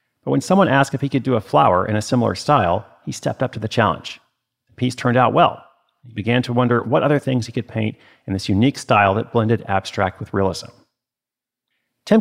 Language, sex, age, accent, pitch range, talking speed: English, male, 40-59, American, 110-130 Hz, 220 wpm